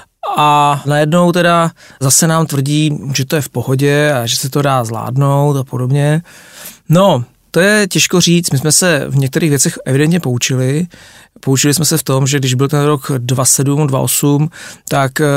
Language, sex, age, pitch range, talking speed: Czech, male, 40-59, 130-155 Hz, 175 wpm